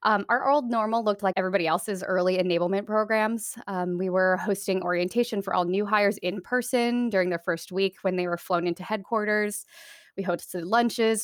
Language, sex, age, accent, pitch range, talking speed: English, female, 20-39, American, 180-215 Hz, 185 wpm